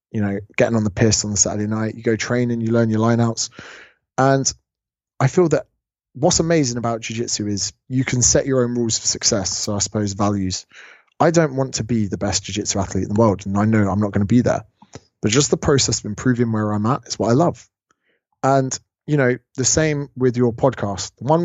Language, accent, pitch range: English, British, 105-130 Hz